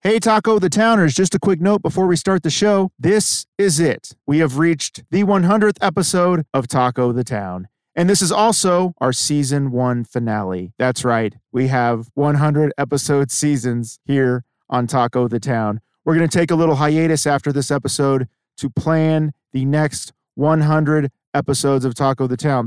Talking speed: 175 wpm